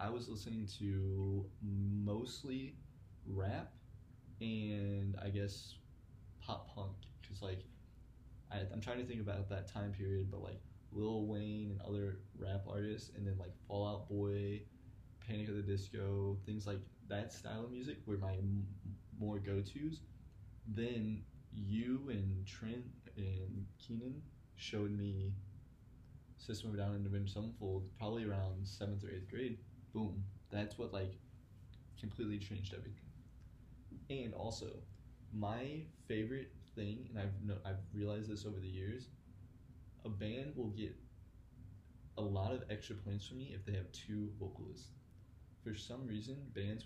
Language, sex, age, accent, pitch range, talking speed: English, male, 20-39, American, 100-115 Hz, 145 wpm